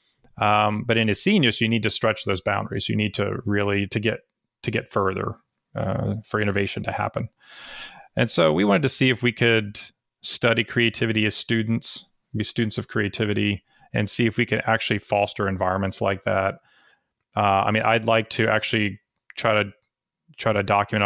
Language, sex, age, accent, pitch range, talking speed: English, male, 30-49, American, 105-115 Hz, 185 wpm